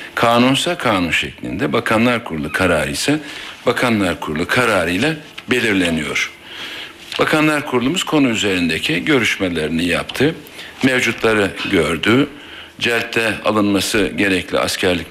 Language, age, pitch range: Turkish, 60-79, 95-125 Hz